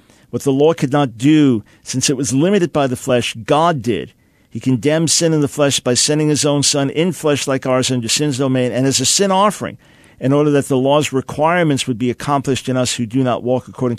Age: 50-69